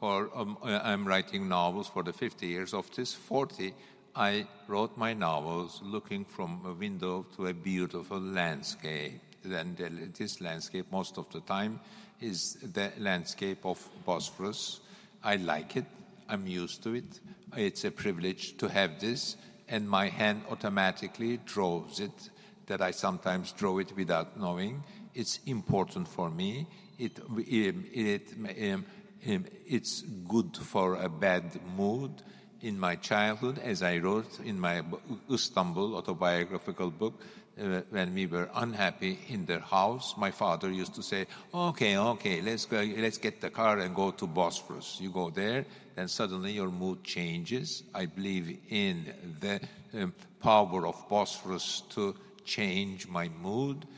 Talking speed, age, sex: 150 wpm, 60-79, male